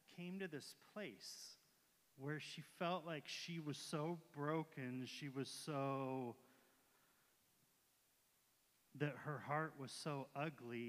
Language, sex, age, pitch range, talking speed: English, male, 30-49, 125-145 Hz, 110 wpm